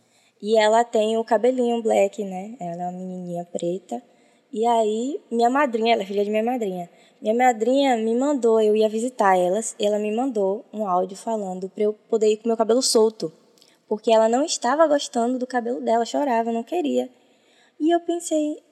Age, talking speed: 10-29, 190 wpm